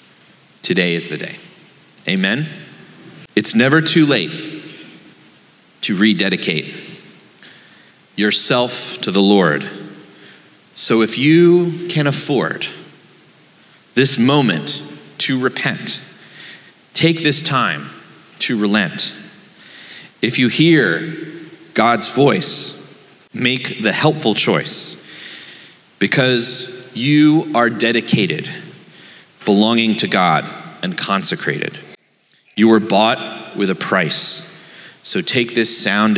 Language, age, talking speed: English, 30-49, 95 wpm